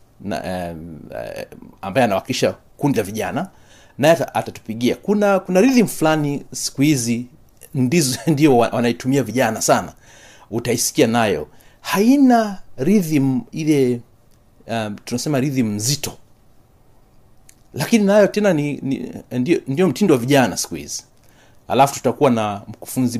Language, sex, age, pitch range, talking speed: Swahili, male, 40-59, 110-140 Hz, 110 wpm